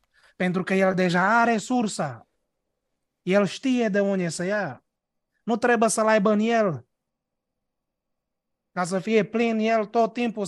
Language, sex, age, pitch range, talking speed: Romanian, male, 30-49, 185-230 Hz, 145 wpm